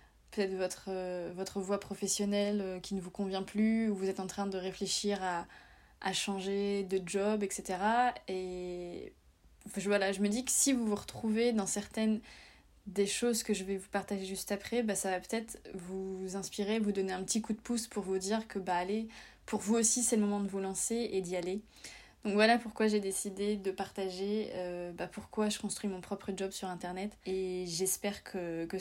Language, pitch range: French, 185-210 Hz